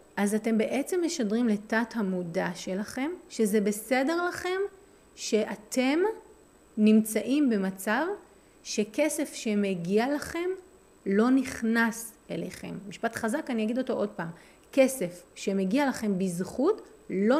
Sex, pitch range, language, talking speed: female, 205-290 Hz, Hebrew, 105 wpm